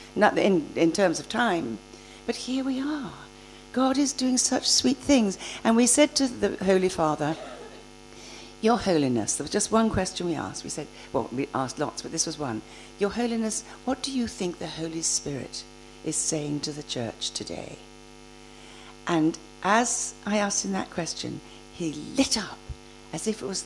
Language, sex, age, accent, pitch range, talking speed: Danish, female, 60-79, British, 150-250 Hz, 180 wpm